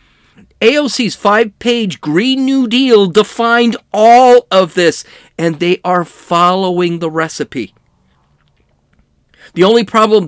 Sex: male